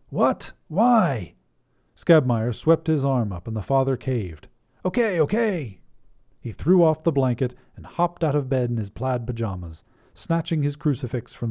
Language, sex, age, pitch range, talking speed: English, male, 40-59, 110-165 Hz, 160 wpm